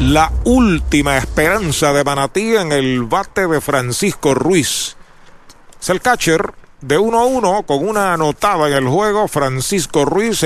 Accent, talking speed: American, 140 wpm